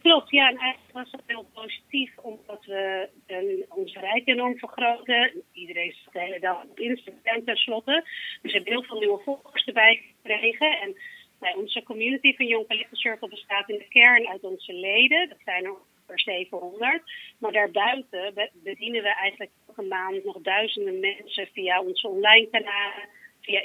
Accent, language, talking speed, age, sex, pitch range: Dutch, Dutch, 165 wpm, 30-49, female, 195-255 Hz